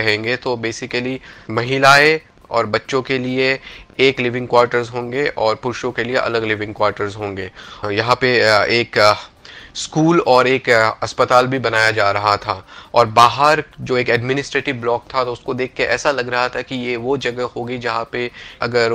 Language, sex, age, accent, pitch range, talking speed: Hindi, male, 30-49, native, 115-135 Hz, 110 wpm